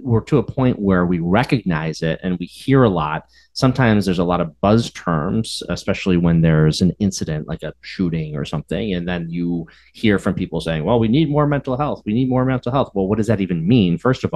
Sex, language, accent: male, English, American